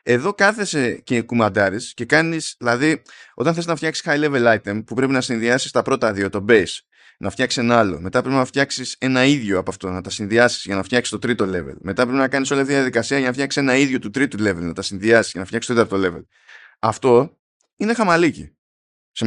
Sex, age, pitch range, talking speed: male, 20-39, 110-140 Hz, 225 wpm